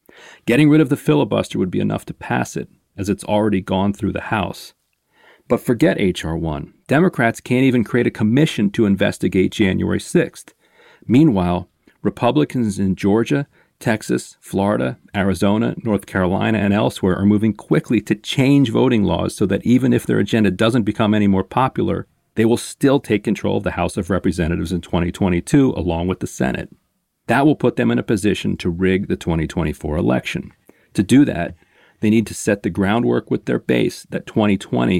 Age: 40-59